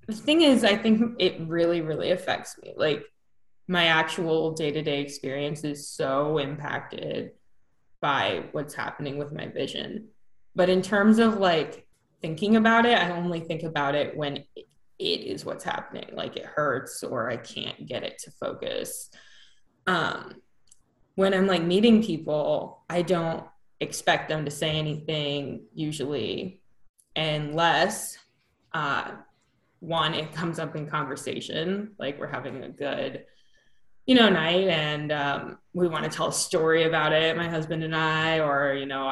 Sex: female